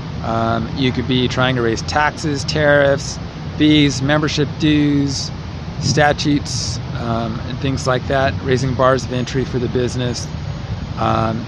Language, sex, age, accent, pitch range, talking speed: English, male, 30-49, American, 125-150 Hz, 135 wpm